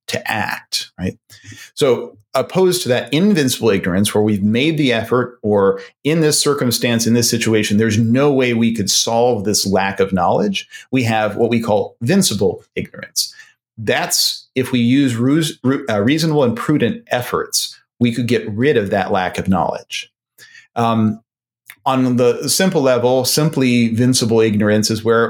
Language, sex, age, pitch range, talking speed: English, male, 40-59, 105-130 Hz, 155 wpm